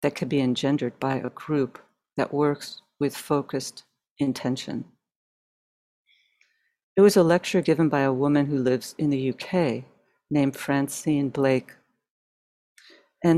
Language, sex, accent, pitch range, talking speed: English, female, American, 135-165 Hz, 130 wpm